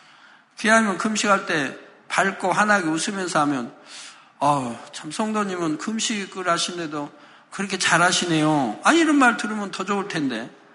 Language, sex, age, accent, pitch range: Korean, male, 50-69, native, 190-245 Hz